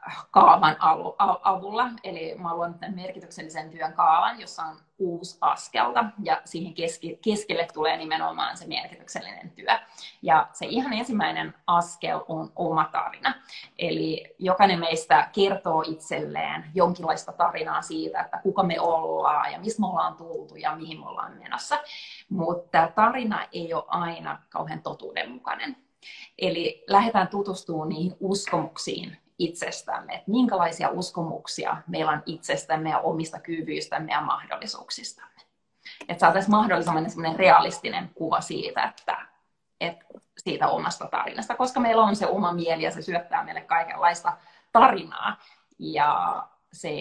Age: 20-39